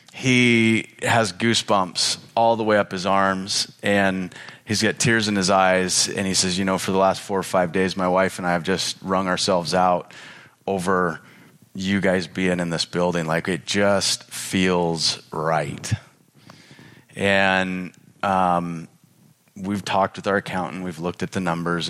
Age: 30-49